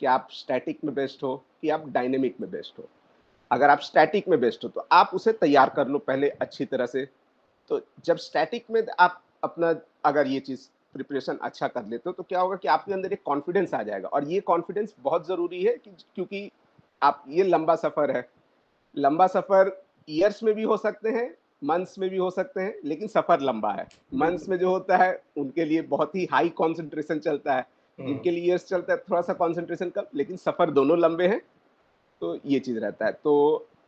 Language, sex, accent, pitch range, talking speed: Hindi, male, native, 155-200 Hz, 205 wpm